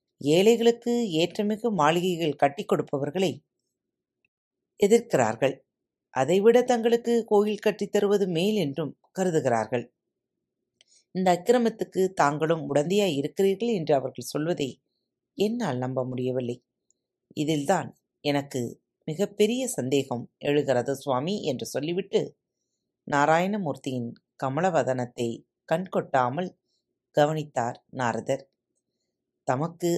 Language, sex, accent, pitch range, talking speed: Tamil, female, native, 140-195 Hz, 75 wpm